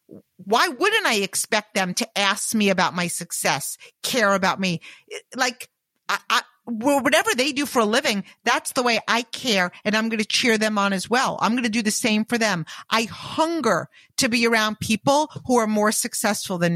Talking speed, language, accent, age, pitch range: 205 wpm, English, American, 50-69, 205-255 Hz